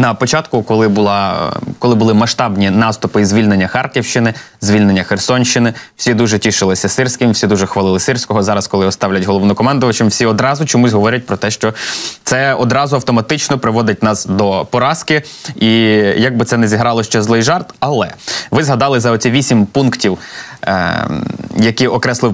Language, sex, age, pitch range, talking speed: Ukrainian, male, 20-39, 105-130 Hz, 155 wpm